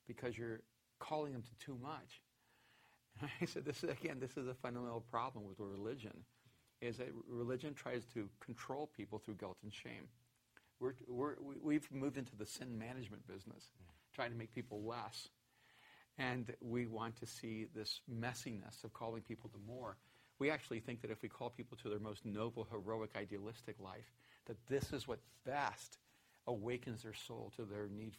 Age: 50-69